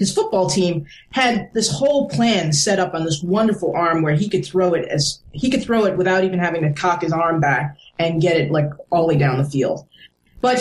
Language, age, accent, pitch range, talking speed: English, 20-39, American, 165-215 Hz, 240 wpm